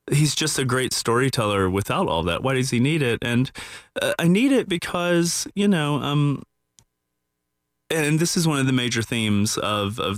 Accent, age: American, 30-49